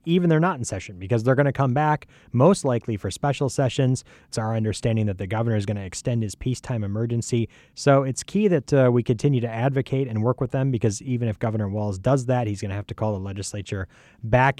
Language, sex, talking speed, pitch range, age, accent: English, male, 240 wpm, 105-135 Hz, 30-49, American